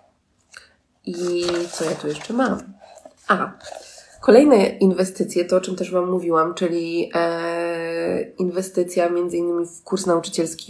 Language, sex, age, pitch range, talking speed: Polish, female, 20-39, 180-225 Hz, 130 wpm